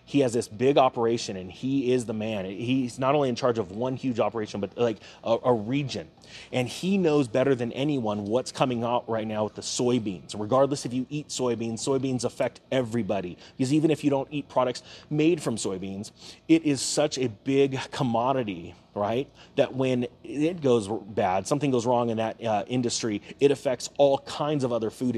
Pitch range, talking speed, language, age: 115-135 Hz, 195 wpm, English, 30-49